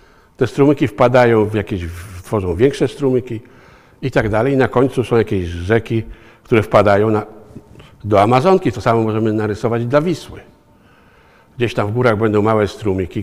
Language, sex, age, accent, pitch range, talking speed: Polish, male, 60-79, native, 100-130 Hz, 155 wpm